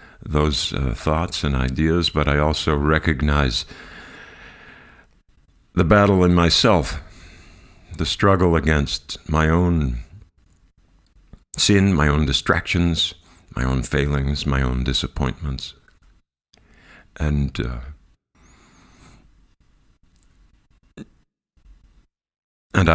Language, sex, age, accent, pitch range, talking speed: English, male, 50-69, American, 75-95 Hz, 80 wpm